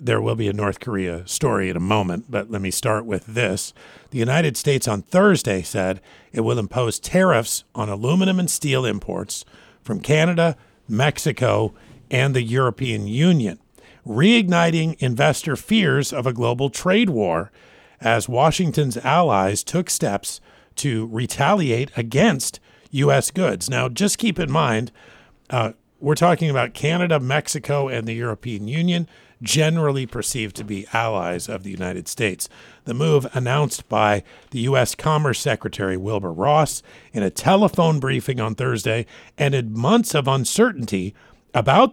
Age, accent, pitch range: 50-69, American, 110-155 Hz